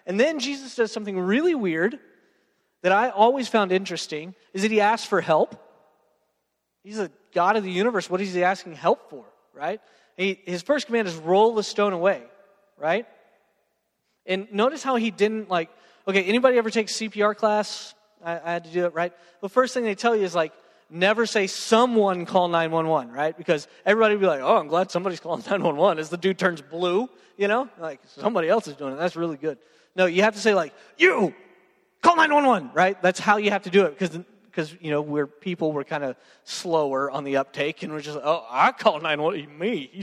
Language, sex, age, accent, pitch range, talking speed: English, male, 30-49, American, 170-220 Hz, 215 wpm